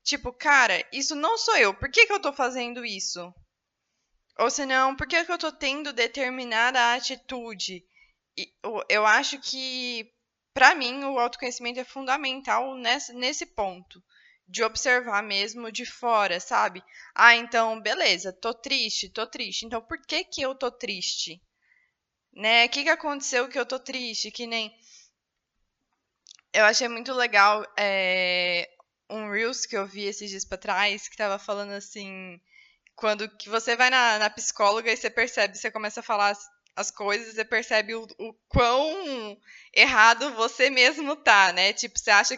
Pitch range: 215-260 Hz